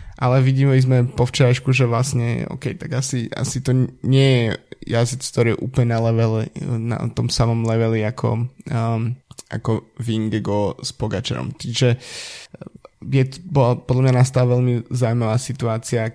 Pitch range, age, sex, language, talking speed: 115-125 Hz, 20-39, male, Slovak, 140 wpm